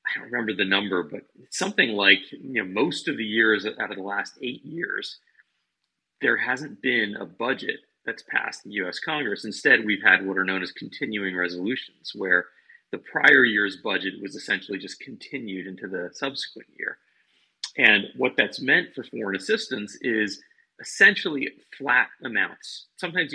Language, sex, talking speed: English, male, 165 wpm